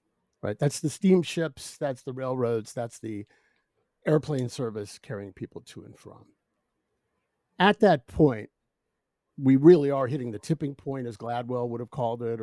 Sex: male